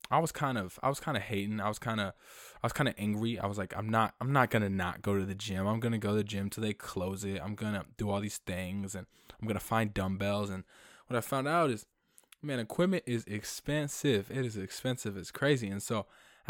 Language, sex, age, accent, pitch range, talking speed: English, male, 20-39, American, 100-115 Hz, 270 wpm